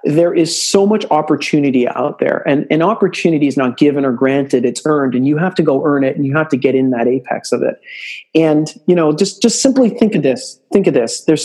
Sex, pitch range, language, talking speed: male, 135-185 Hz, English, 245 wpm